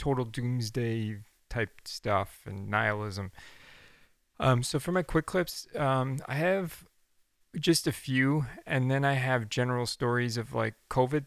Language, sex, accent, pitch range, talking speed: English, male, American, 115-140 Hz, 145 wpm